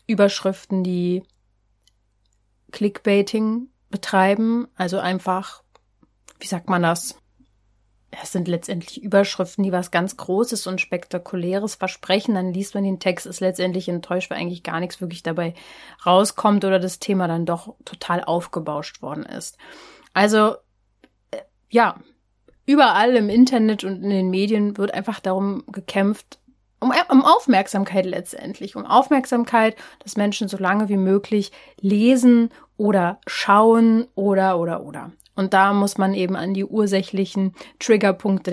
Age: 30-49